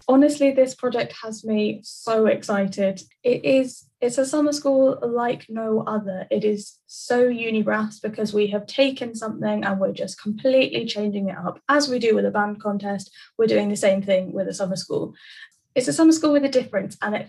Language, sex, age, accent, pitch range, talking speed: English, female, 10-29, British, 200-240 Hz, 200 wpm